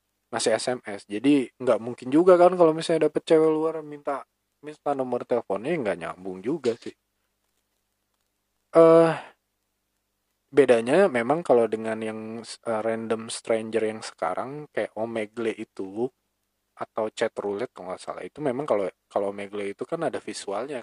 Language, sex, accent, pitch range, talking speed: Indonesian, male, native, 100-120 Hz, 140 wpm